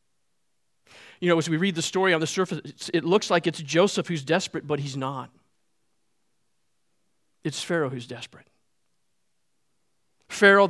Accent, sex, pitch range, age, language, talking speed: American, male, 140-200 Hz, 50-69, English, 140 wpm